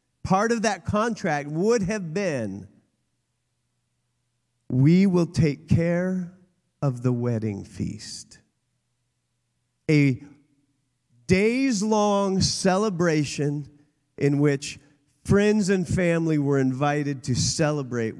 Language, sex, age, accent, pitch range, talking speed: English, male, 40-59, American, 125-180 Hz, 90 wpm